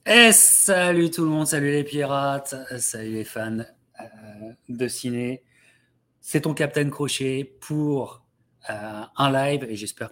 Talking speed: 150 wpm